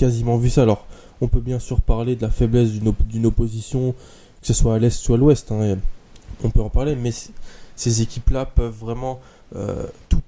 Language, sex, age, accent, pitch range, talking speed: French, male, 20-39, French, 110-125 Hz, 215 wpm